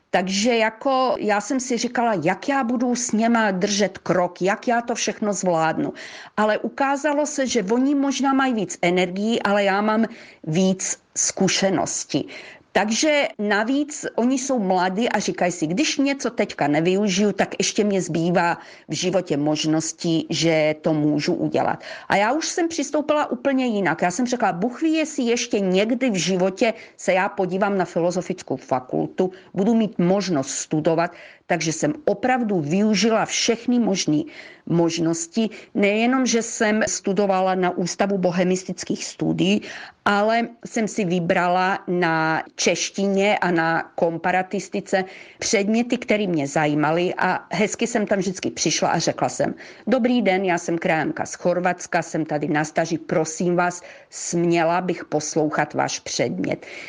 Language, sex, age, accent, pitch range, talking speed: Czech, female, 40-59, native, 175-230 Hz, 145 wpm